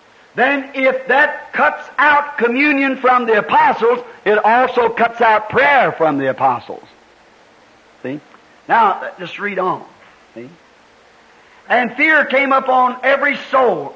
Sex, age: male, 50-69